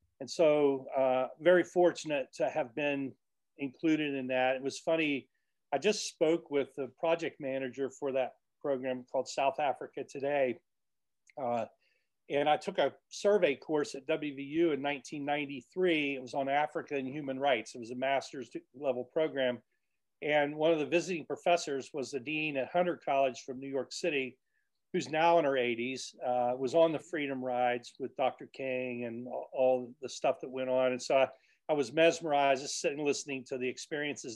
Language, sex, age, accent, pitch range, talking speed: English, male, 40-59, American, 125-150 Hz, 180 wpm